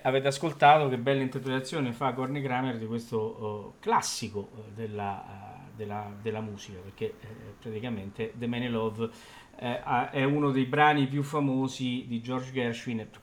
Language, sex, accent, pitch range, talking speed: Italian, male, native, 110-130 Hz, 170 wpm